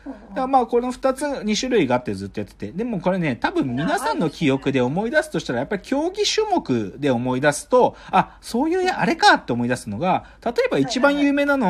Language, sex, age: Japanese, male, 40-59